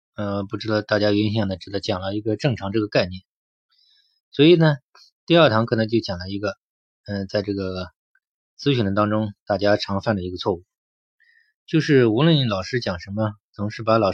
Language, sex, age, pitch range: Chinese, male, 20-39, 100-125 Hz